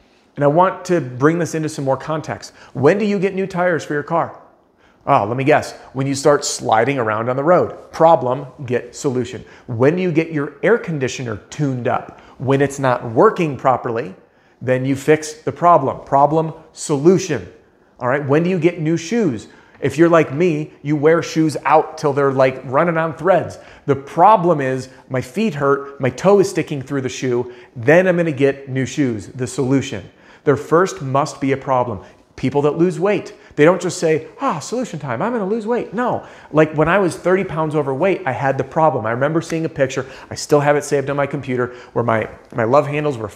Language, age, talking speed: English, 40-59, 210 wpm